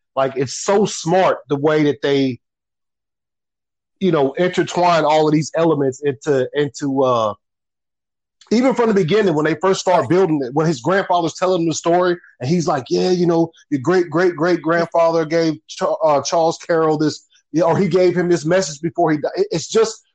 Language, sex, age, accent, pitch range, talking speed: English, male, 30-49, American, 145-185 Hz, 195 wpm